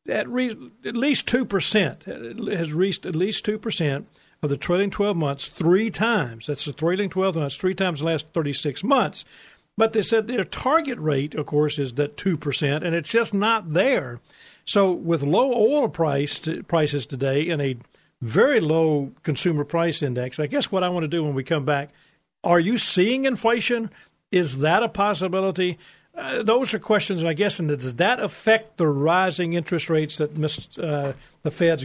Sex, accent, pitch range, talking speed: male, American, 150-210 Hz, 175 wpm